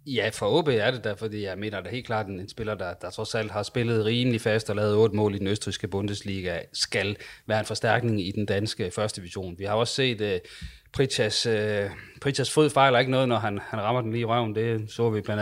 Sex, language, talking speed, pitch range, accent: male, Danish, 255 wpm, 95-110 Hz, native